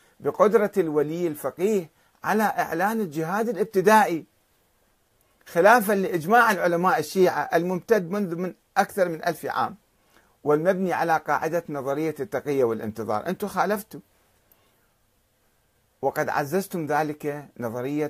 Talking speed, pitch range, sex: 100 wpm, 135-195 Hz, male